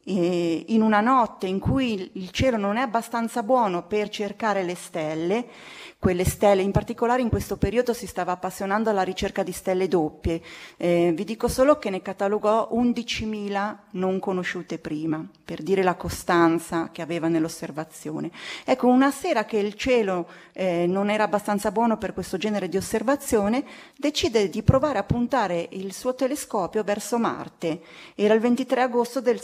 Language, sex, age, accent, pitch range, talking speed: Italian, female, 30-49, native, 185-245 Hz, 160 wpm